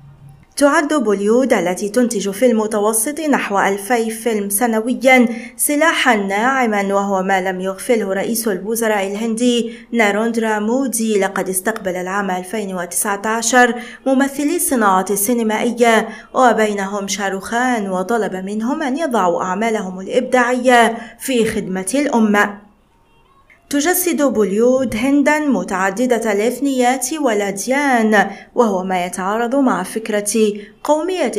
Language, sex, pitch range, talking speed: Arabic, female, 200-255 Hz, 100 wpm